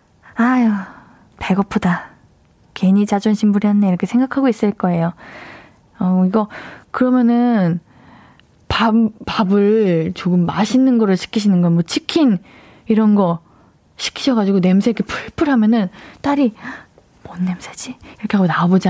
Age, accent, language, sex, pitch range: 20-39, native, Korean, female, 185-265 Hz